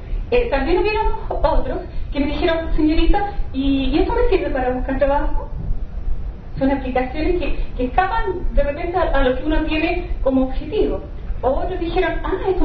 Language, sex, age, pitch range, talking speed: Spanish, female, 30-49, 270-350 Hz, 165 wpm